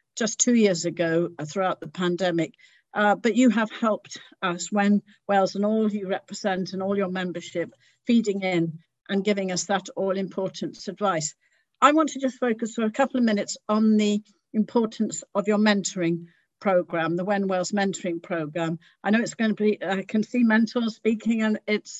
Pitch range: 185-225 Hz